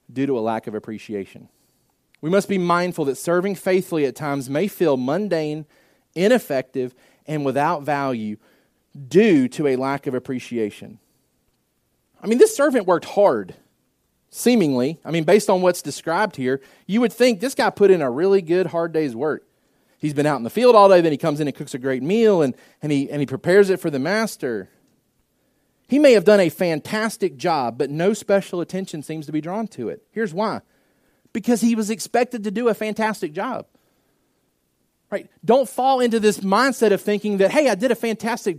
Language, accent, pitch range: English, American, 155-235 Hz